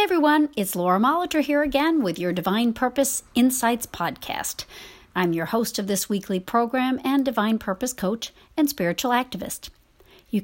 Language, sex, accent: English, female, American